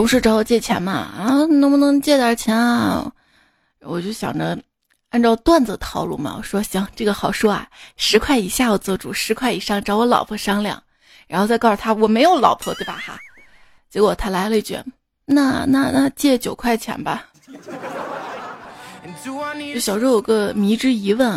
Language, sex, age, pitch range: Chinese, female, 20-39, 210-260 Hz